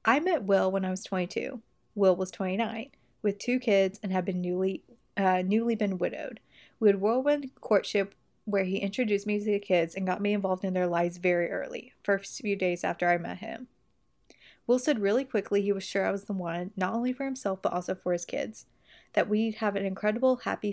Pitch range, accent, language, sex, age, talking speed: 185-215 Hz, American, English, female, 30-49, 210 wpm